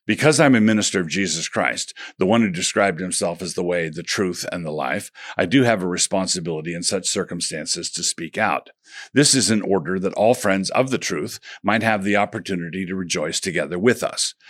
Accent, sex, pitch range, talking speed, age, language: American, male, 90-110 Hz, 210 wpm, 50-69, English